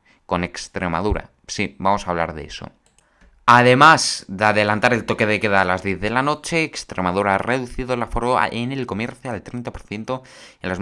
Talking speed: 185 wpm